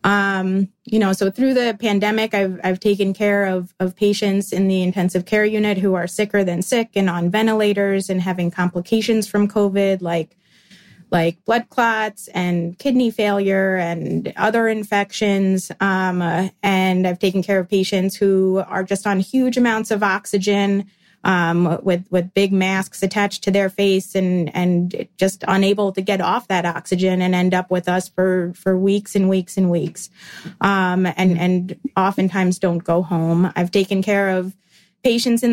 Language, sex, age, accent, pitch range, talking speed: English, female, 20-39, American, 185-205 Hz, 170 wpm